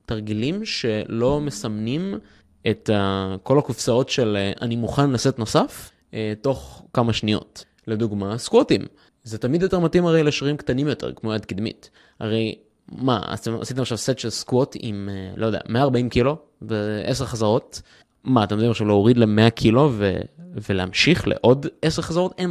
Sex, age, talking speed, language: male, 20-39, 145 wpm, Hebrew